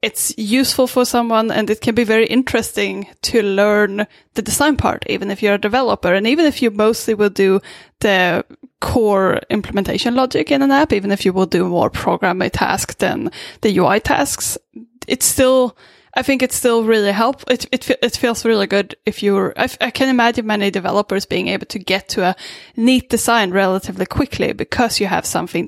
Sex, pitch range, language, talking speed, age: female, 195-245 Hz, English, 195 wpm, 10-29